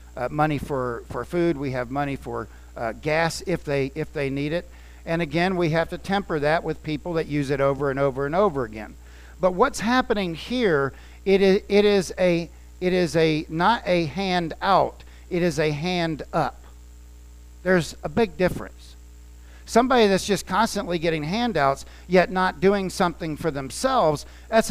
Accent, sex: American, male